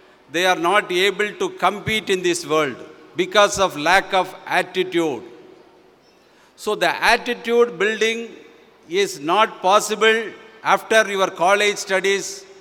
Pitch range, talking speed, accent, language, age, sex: 180-215 Hz, 120 wpm, native, Tamil, 50-69, male